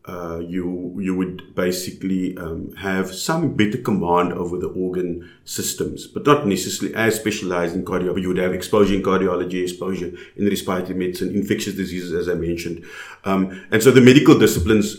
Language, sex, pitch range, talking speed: English, male, 90-105 Hz, 170 wpm